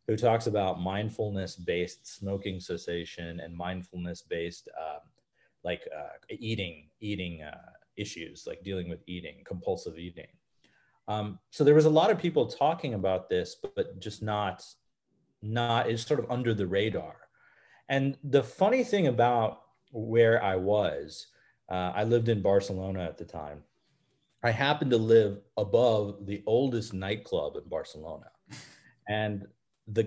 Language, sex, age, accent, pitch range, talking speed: English, male, 30-49, American, 100-135 Hz, 140 wpm